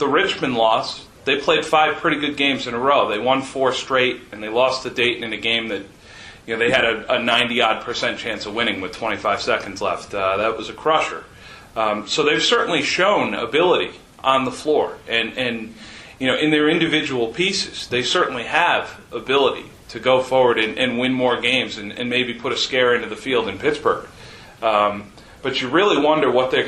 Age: 40-59